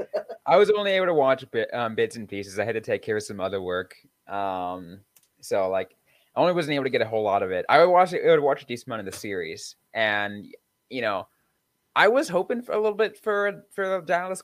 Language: English